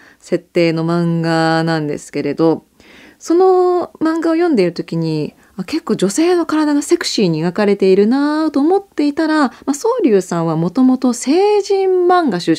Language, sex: Japanese, female